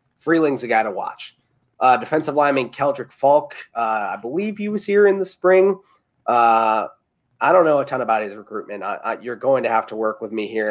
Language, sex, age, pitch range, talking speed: English, male, 30-49, 115-145 Hz, 205 wpm